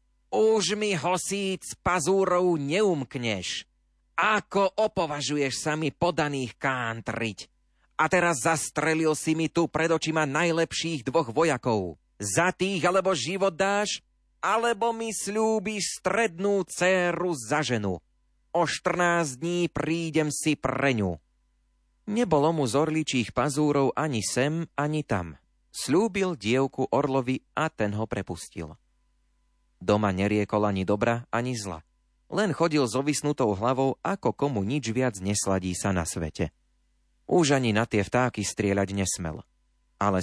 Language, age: Slovak, 30-49